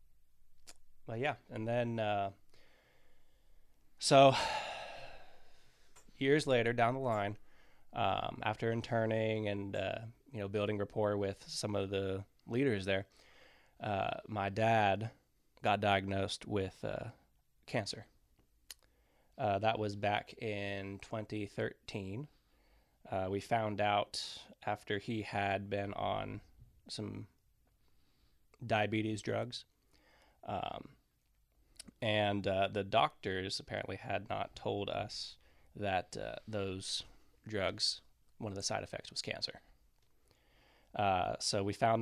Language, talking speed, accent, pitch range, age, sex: English, 110 wpm, American, 95-110 Hz, 20-39, male